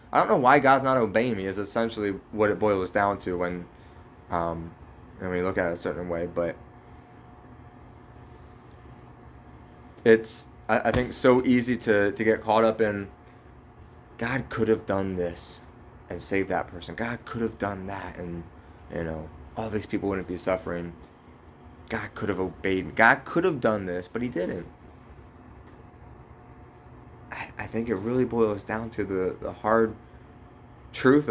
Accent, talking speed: American, 165 wpm